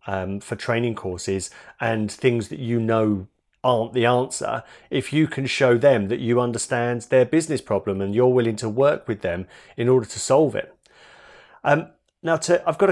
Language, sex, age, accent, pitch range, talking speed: English, male, 30-49, British, 115-135 Hz, 185 wpm